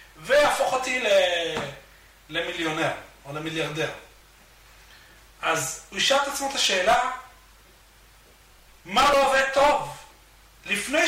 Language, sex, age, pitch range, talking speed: Hebrew, male, 40-59, 180-265 Hz, 90 wpm